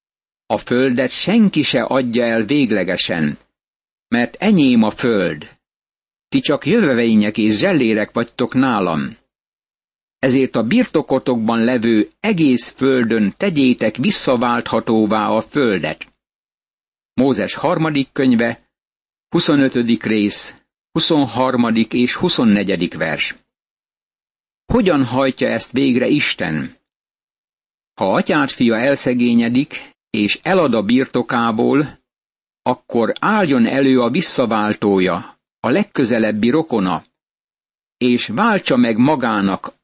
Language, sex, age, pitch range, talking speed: Hungarian, male, 60-79, 115-140 Hz, 95 wpm